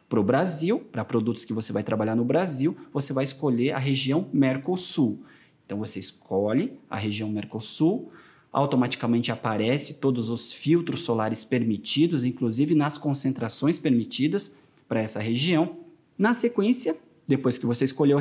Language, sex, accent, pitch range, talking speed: Portuguese, male, Brazilian, 125-160 Hz, 140 wpm